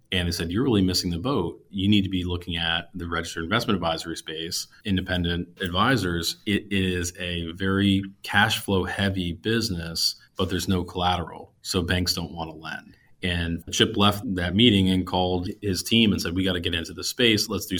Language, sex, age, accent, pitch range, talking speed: English, male, 30-49, American, 85-100 Hz, 200 wpm